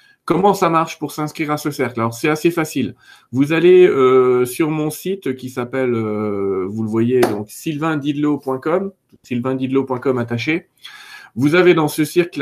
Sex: male